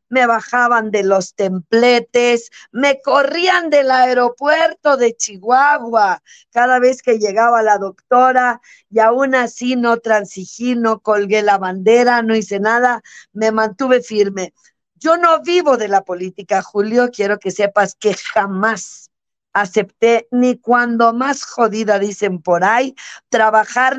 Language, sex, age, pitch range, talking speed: Spanish, female, 50-69, 205-245 Hz, 135 wpm